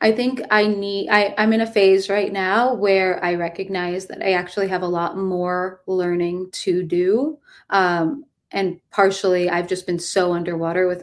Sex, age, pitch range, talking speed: female, 20-39, 175-195 Hz, 180 wpm